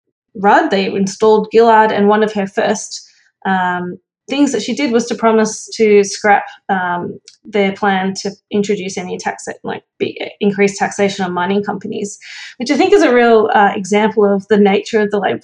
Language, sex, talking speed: English, female, 185 wpm